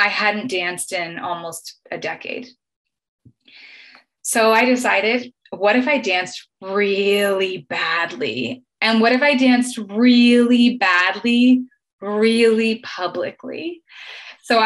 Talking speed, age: 105 wpm, 20-39